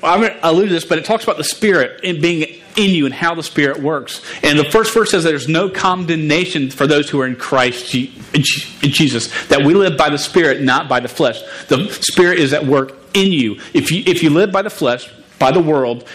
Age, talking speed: 40-59, 240 wpm